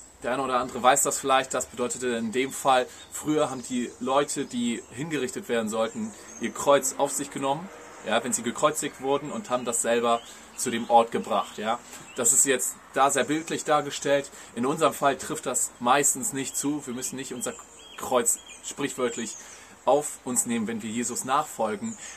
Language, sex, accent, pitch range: German, male, German, 125-195 Hz